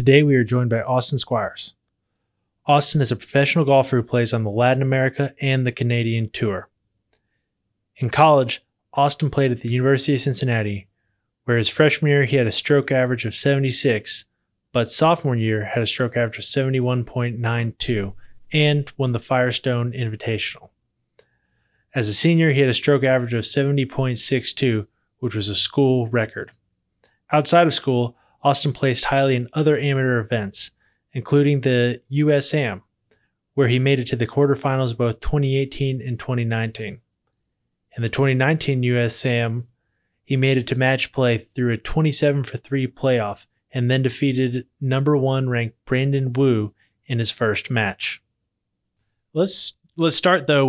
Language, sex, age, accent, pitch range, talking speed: English, male, 20-39, American, 115-140 Hz, 145 wpm